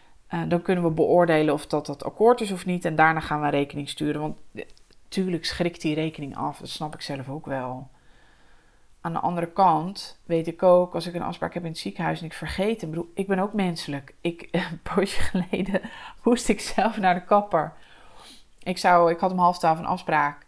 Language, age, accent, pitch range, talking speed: English, 20-39, Dutch, 165-205 Hz, 215 wpm